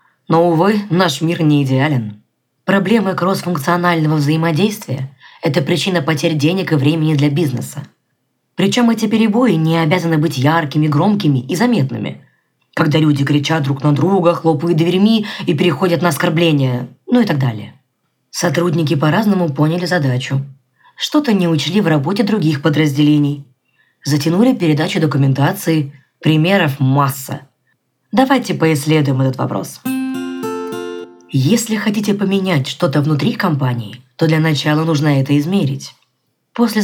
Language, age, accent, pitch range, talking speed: Russian, 20-39, native, 140-180 Hz, 125 wpm